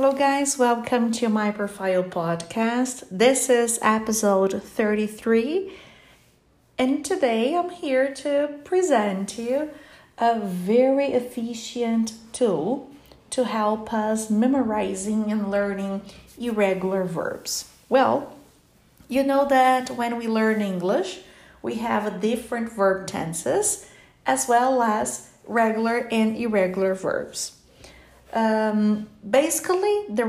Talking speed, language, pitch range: 105 wpm, English, 205-255 Hz